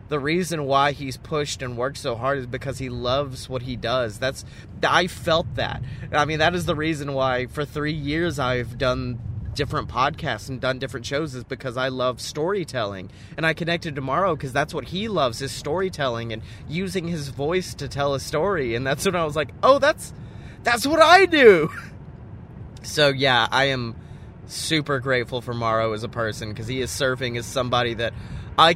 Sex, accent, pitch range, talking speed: male, American, 120-150 Hz, 195 wpm